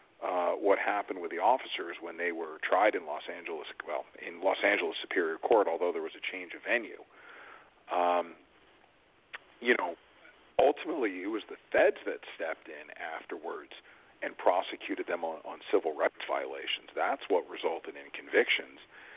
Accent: American